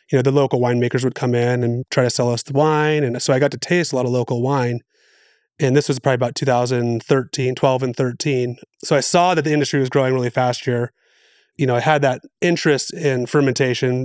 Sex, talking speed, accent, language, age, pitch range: male, 230 wpm, American, English, 30-49, 125-140 Hz